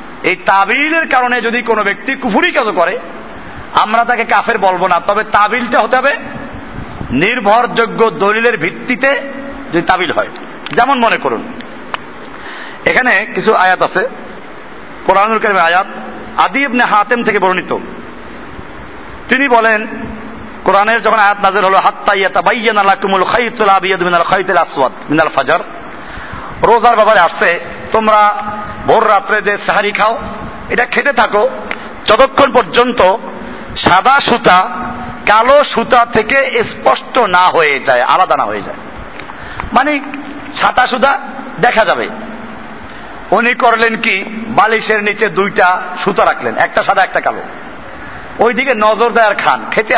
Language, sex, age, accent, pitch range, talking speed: Bengali, male, 50-69, native, 200-250 Hz, 90 wpm